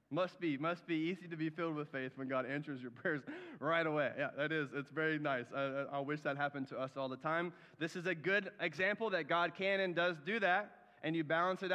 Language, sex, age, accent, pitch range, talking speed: English, male, 30-49, American, 160-215 Hz, 255 wpm